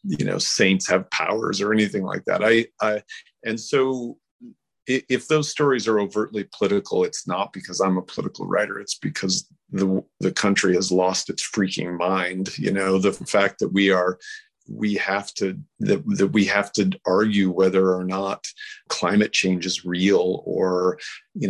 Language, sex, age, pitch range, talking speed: English, male, 40-59, 95-130 Hz, 170 wpm